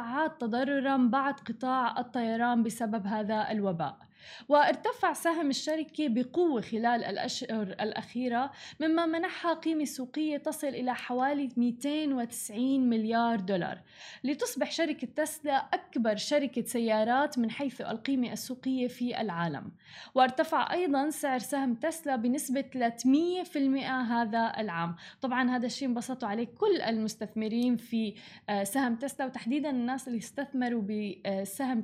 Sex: female